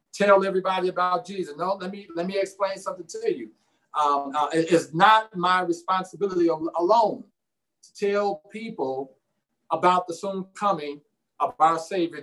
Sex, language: male, English